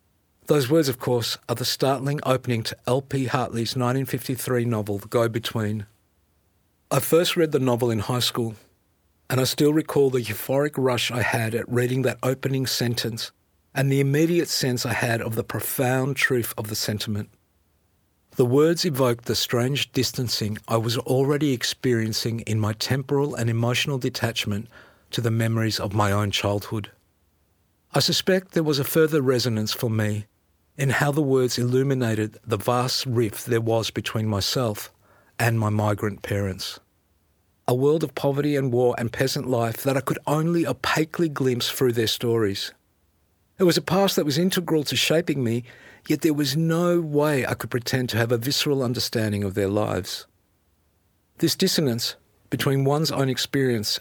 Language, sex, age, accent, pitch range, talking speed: English, male, 50-69, Australian, 105-135 Hz, 165 wpm